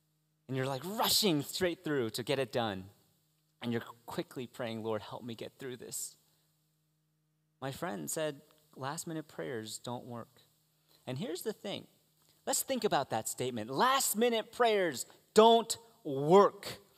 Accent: American